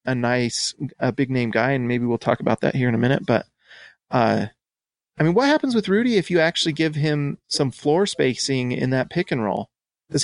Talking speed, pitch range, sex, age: 225 wpm, 130-165 Hz, male, 30-49